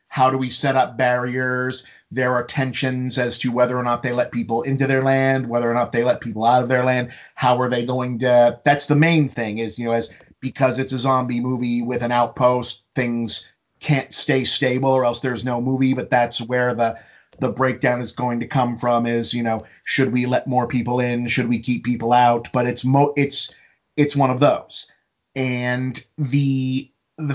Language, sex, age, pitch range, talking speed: English, male, 30-49, 120-140 Hz, 210 wpm